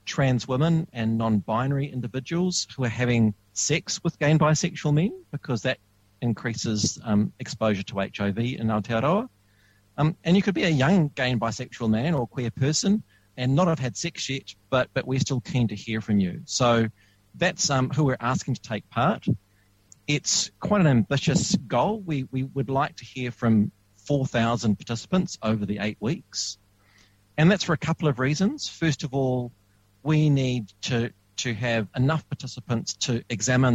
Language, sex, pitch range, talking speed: English, male, 105-140 Hz, 175 wpm